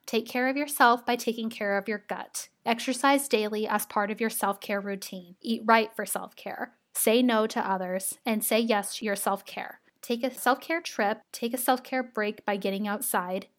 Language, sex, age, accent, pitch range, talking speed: English, female, 10-29, American, 200-250 Hz, 190 wpm